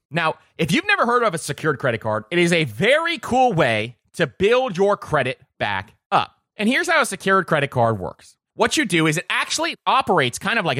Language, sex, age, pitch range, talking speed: English, male, 30-49, 150-245 Hz, 220 wpm